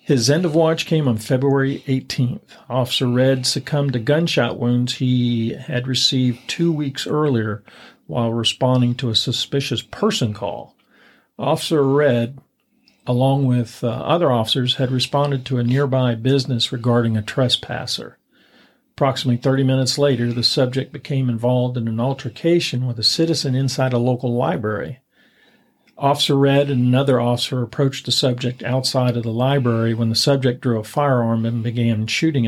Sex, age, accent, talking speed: male, 50-69, American, 150 wpm